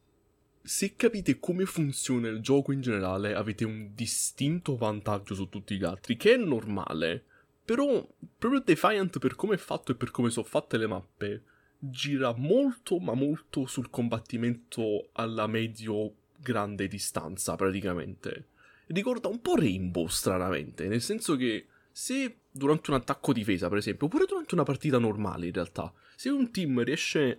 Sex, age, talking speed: male, 20-39, 150 wpm